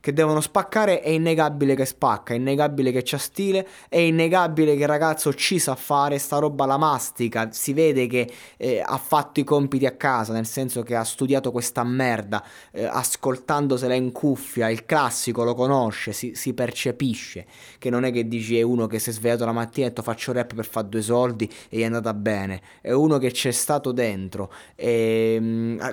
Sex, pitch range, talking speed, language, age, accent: male, 115-145 Hz, 200 wpm, Italian, 20-39, native